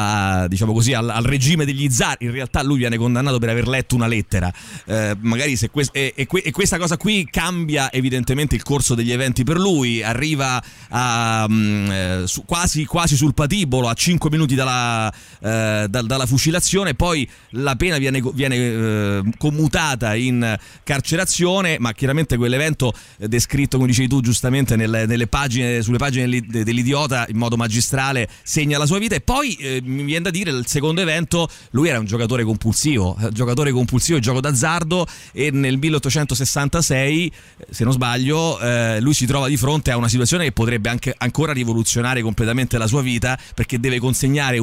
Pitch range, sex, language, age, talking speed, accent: 120-150 Hz, male, Italian, 30-49, 175 wpm, native